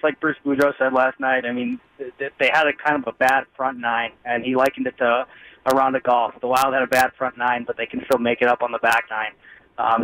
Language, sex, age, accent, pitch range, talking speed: English, male, 20-39, American, 115-135 Hz, 270 wpm